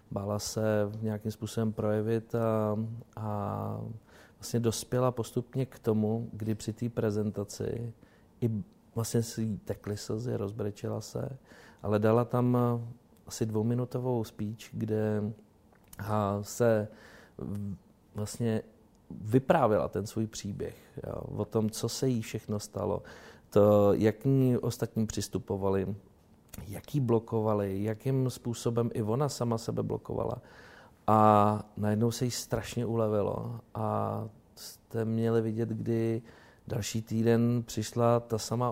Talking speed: 115 wpm